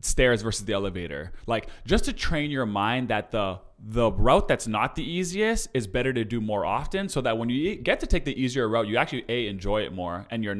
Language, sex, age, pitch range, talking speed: English, male, 20-39, 95-120 Hz, 240 wpm